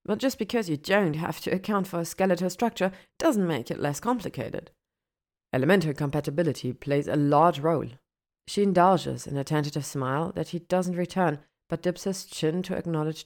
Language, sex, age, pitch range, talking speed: German, female, 30-49, 145-185 Hz, 175 wpm